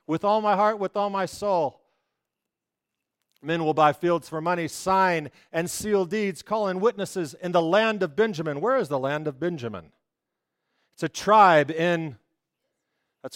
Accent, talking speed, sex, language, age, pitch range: American, 165 wpm, male, English, 40-59, 155-215 Hz